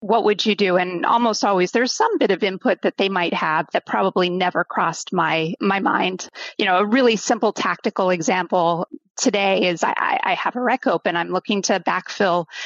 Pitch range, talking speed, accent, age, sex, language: 190-235 Hz, 200 wpm, American, 30-49, female, English